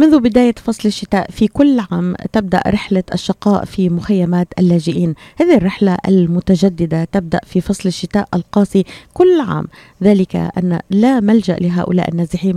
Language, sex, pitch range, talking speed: Arabic, female, 175-205 Hz, 140 wpm